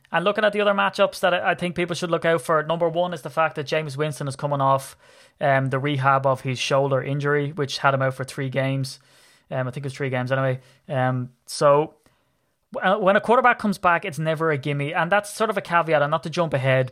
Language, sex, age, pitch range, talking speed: English, male, 20-39, 130-155 Hz, 245 wpm